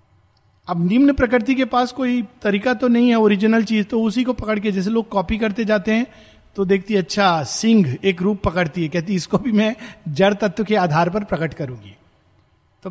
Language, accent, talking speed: Hindi, native, 200 wpm